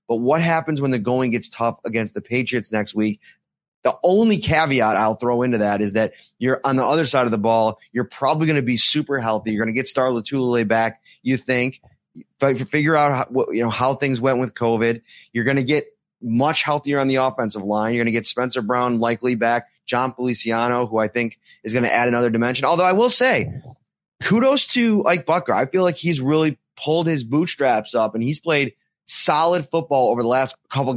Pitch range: 115-145 Hz